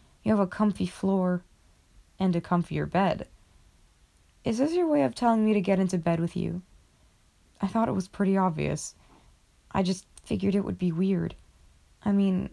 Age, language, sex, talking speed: 20-39, English, female, 175 wpm